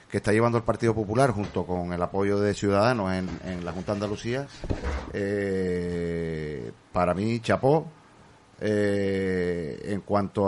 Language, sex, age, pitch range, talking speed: Spanish, male, 30-49, 105-130 Hz, 145 wpm